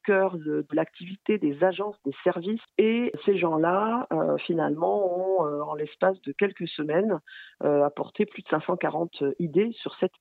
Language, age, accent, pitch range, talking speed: French, 40-59, French, 165-200 Hz, 155 wpm